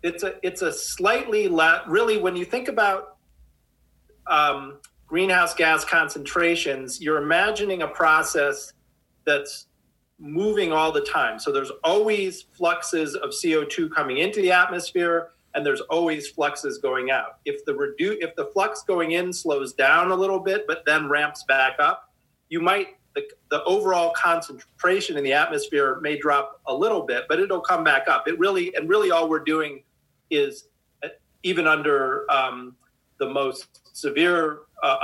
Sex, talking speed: male, 150 wpm